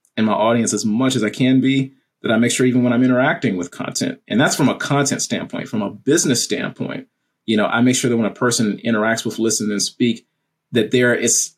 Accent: American